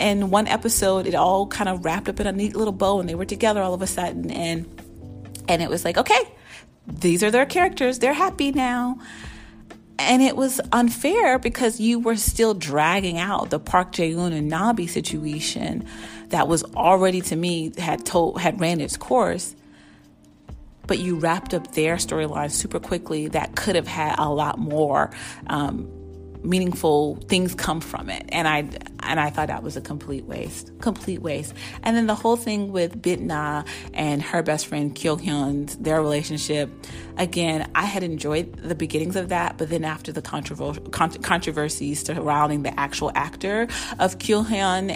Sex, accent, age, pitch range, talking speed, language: female, American, 30-49, 150-200 Hz, 175 wpm, English